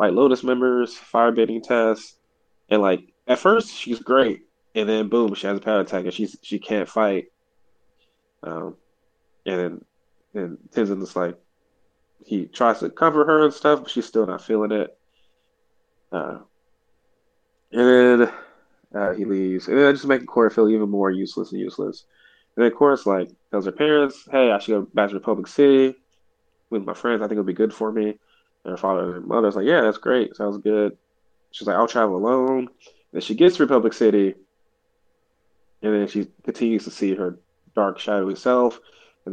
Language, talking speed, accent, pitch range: English, 185 wpm, American, 100-130 Hz